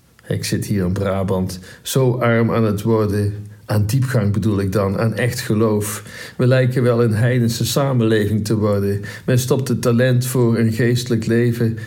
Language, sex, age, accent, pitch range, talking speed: Dutch, male, 60-79, Dutch, 105-125 Hz, 170 wpm